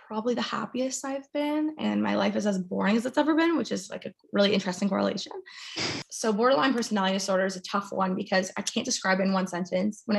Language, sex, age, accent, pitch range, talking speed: English, female, 20-39, American, 190-230 Hz, 230 wpm